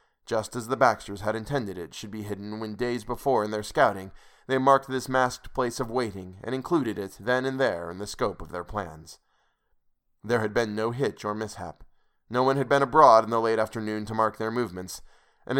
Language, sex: English, male